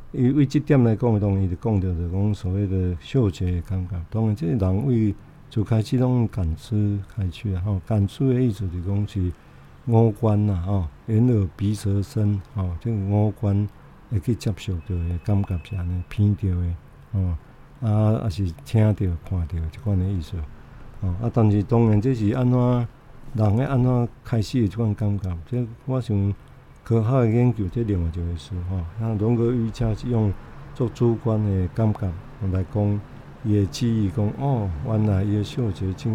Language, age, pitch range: Chinese, 50-69, 95-115 Hz